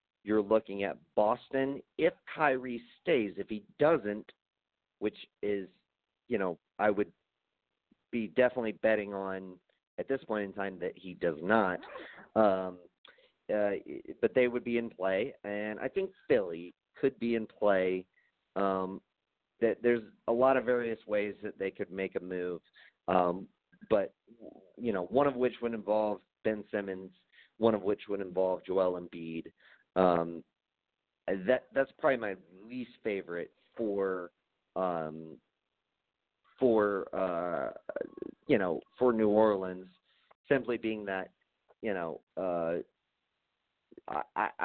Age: 40-59